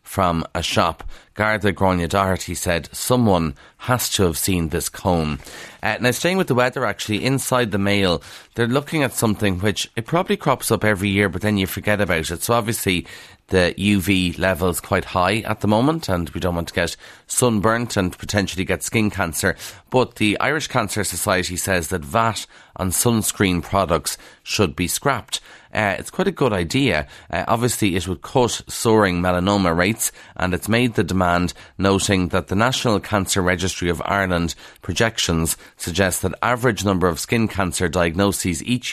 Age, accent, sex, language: 30-49, Irish, male, English